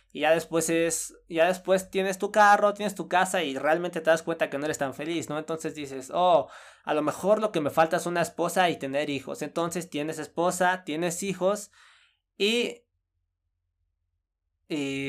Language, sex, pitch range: Spanish, male, 140-185 Hz